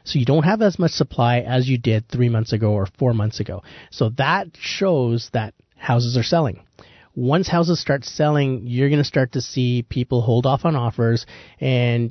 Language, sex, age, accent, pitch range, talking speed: English, male, 30-49, American, 115-135 Hz, 200 wpm